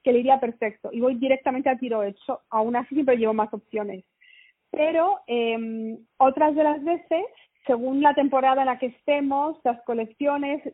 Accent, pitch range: Spanish, 235-280 Hz